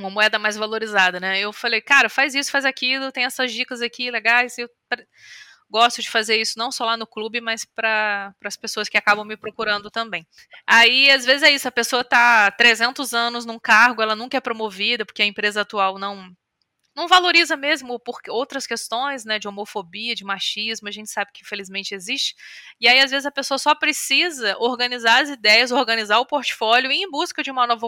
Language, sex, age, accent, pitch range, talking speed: Portuguese, female, 20-39, Brazilian, 210-255 Hz, 200 wpm